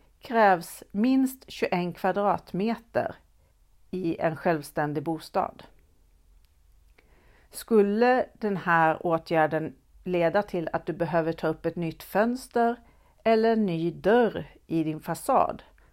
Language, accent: Swedish, native